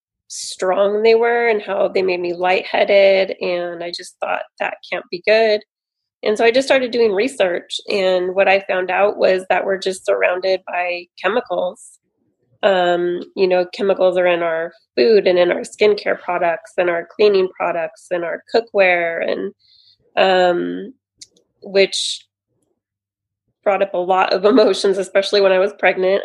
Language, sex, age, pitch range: English, female, 20-39, 175-195 Hz